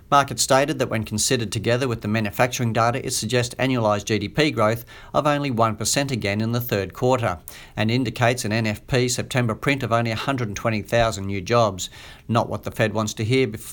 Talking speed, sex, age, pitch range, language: 180 wpm, male, 50-69, 110-130 Hz, English